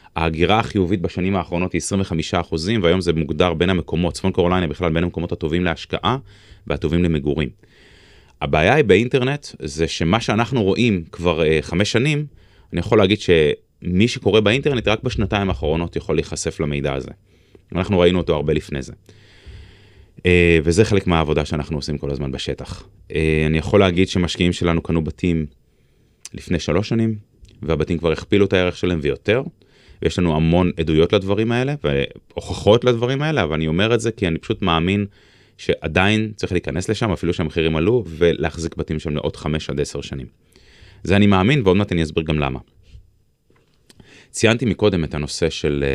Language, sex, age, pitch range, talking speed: Hebrew, male, 20-39, 80-100 Hz, 165 wpm